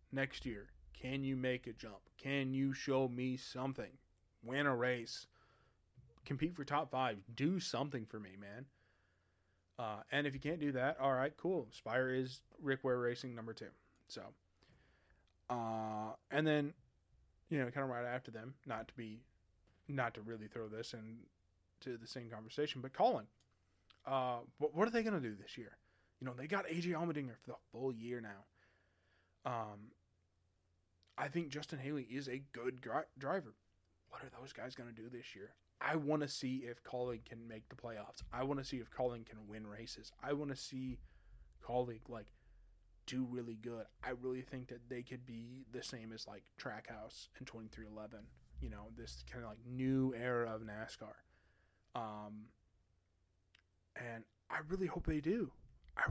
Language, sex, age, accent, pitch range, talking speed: English, male, 20-39, American, 105-135 Hz, 175 wpm